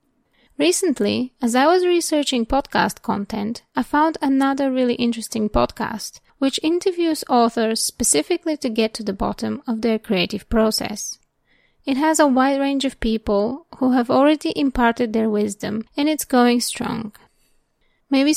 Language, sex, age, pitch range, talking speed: English, female, 20-39, 220-285 Hz, 145 wpm